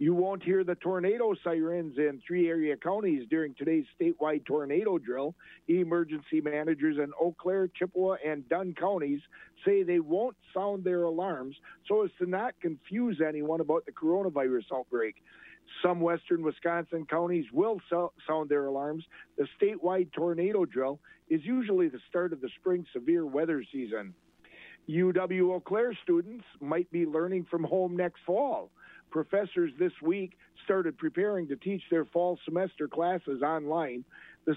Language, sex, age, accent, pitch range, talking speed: English, male, 50-69, American, 160-195 Hz, 150 wpm